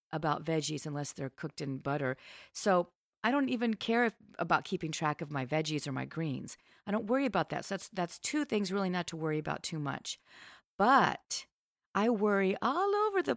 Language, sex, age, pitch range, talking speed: English, female, 50-69, 155-215 Hz, 195 wpm